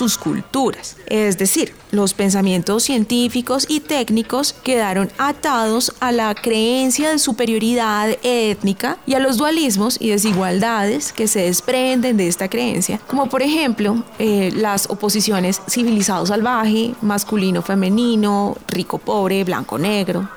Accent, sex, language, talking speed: Colombian, female, Spanish, 125 wpm